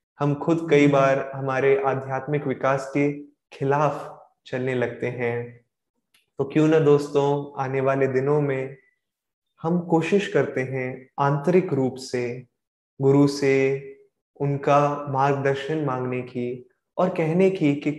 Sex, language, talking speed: male, Hindi, 125 wpm